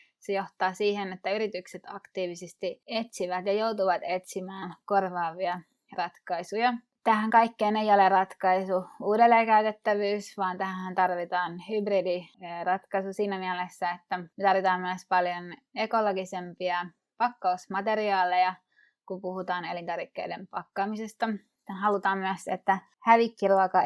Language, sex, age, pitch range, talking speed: Finnish, female, 20-39, 180-210 Hz, 95 wpm